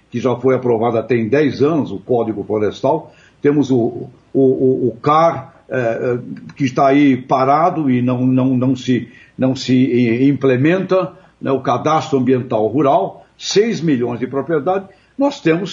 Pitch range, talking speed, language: 130-175 Hz, 135 wpm, Portuguese